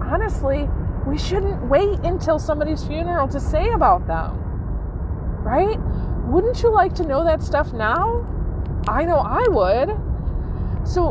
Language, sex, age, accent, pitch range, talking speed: English, female, 30-49, American, 205-315 Hz, 135 wpm